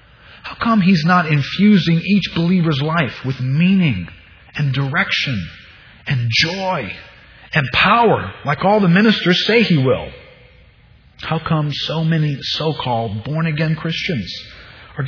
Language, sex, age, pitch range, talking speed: English, male, 40-59, 105-160 Hz, 125 wpm